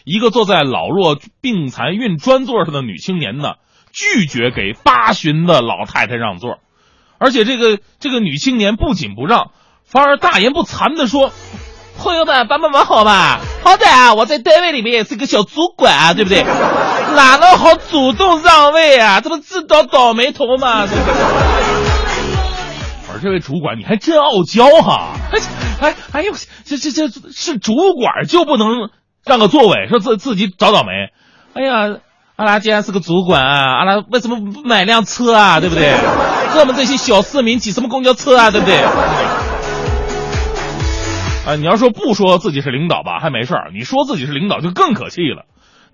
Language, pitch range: Chinese, 190-280 Hz